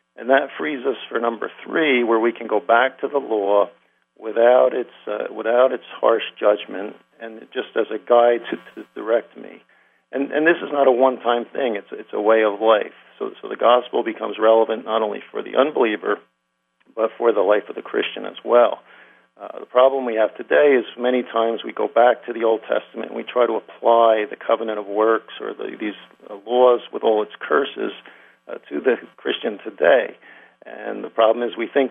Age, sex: 50-69, male